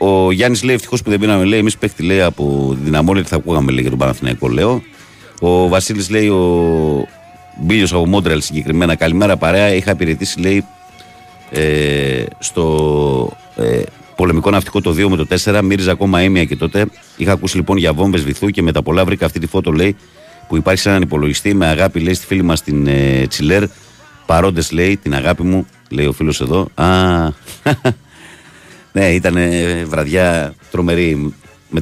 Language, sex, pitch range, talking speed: Greek, male, 75-95 Hz, 165 wpm